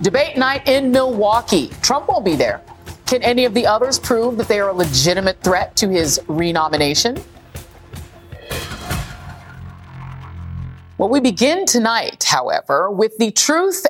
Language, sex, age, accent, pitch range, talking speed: English, female, 40-59, American, 160-230 Hz, 135 wpm